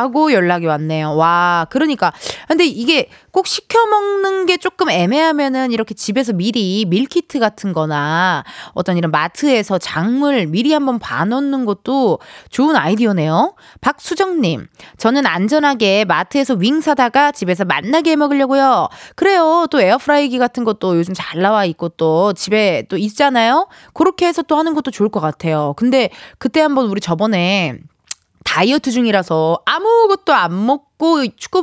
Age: 20-39